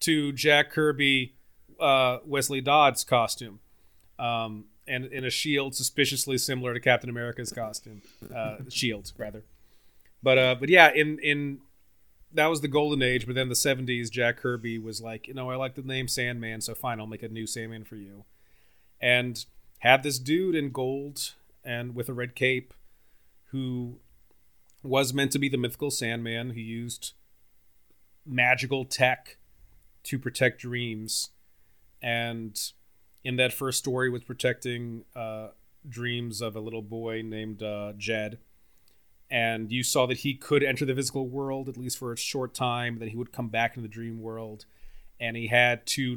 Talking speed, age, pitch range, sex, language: 165 wpm, 30-49, 110-130 Hz, male, English